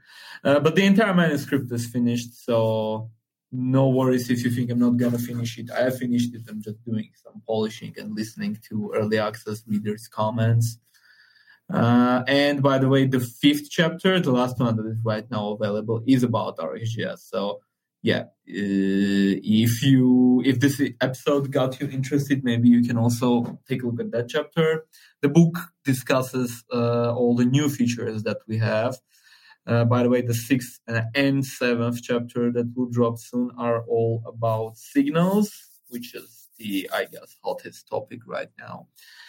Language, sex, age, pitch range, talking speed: English, male, 20-39, 115-140 Hz, 170 wpm